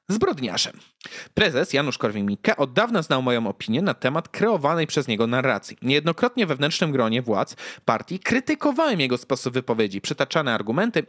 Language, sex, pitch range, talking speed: Polish, male, 130-200 Hz, 140 wpm